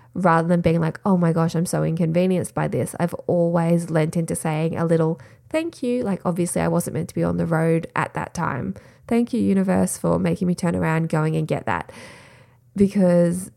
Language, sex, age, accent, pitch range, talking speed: English, female, 20-39, Australian, 155-185 Hz, 210 wpm